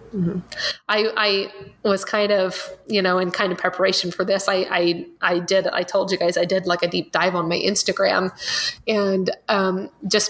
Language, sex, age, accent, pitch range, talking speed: English, female, 30-49, American, 185-215 Hz, 205 wpm